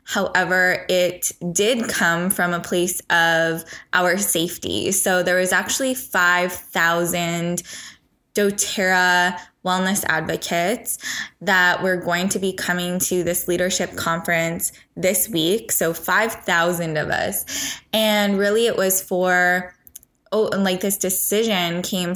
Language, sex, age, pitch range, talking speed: English, female, 10-29, 170-195 Hz, 120 wpm